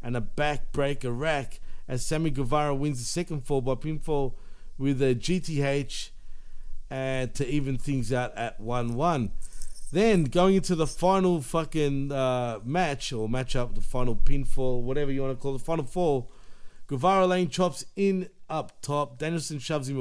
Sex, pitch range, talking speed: male, 130-165 Hz, 170 wpm